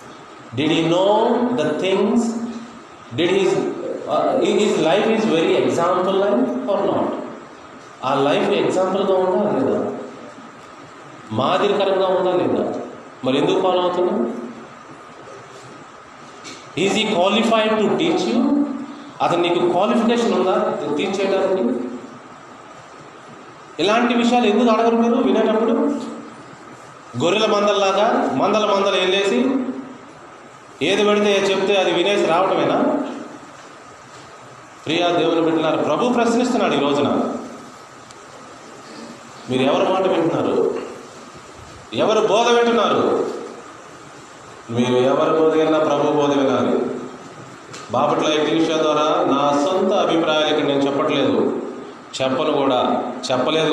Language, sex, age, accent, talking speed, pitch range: Telugu, male, 30-49, native, 95 wpm, 155-235 Hz